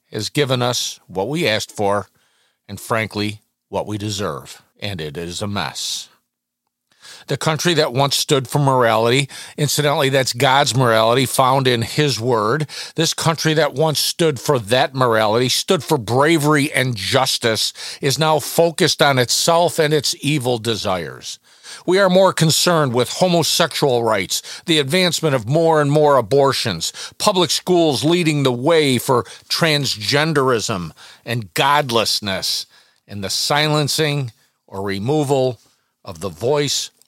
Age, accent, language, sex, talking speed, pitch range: 50-69, American, English, male, 140 wpm, 115-155 Hz